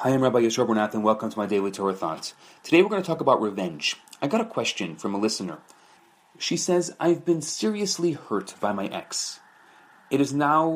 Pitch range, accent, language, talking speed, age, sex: 110-170 Hz, Canadian, English, 205 wpm, 30-49, male